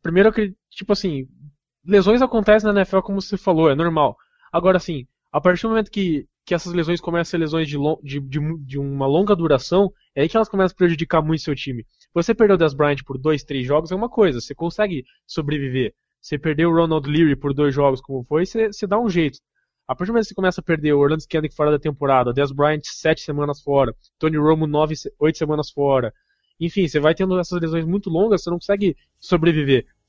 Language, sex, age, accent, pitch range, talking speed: Portuguese, male, 20-39, Brazilian, 145-180 Hz, 225 wpm